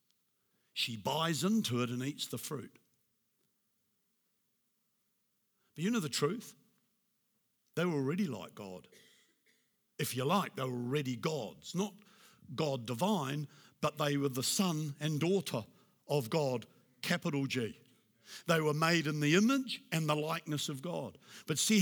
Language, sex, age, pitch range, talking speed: English, male, 60-79, 140-195 Hz, 145 wpm